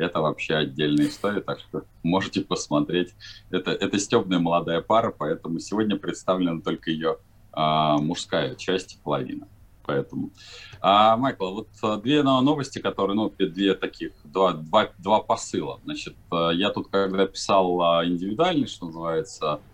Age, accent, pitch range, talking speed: 20-39, native, 85-110 Hz, 125 wpm